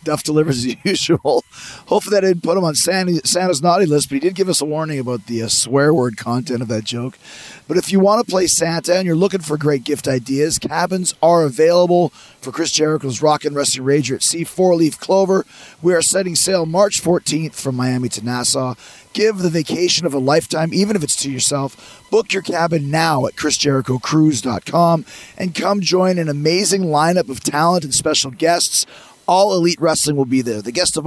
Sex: male